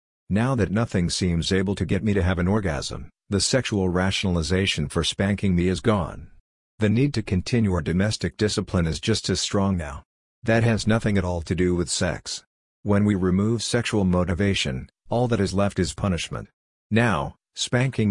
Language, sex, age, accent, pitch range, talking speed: English, male, 50-69, American, 90-105 Hz, 180 wpm